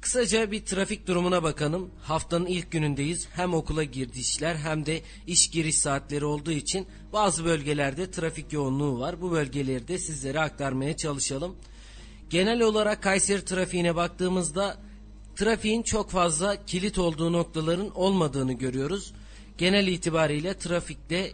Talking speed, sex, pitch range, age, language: 125 wpm, male, 150-195 Hz, 40-59, Turkish